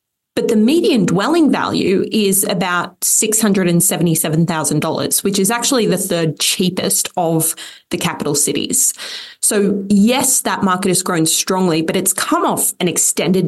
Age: 20-39